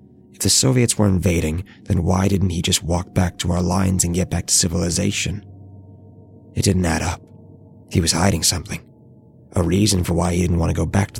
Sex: male